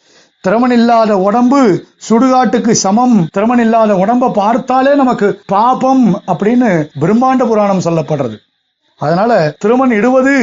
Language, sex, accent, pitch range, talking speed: Tamil, male, native, 180-235 Hz, 90 wpm